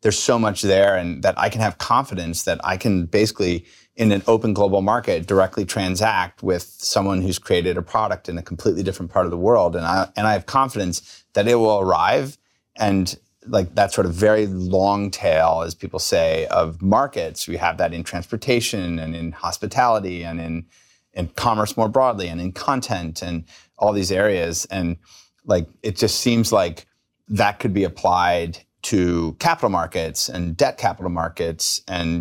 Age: 30-49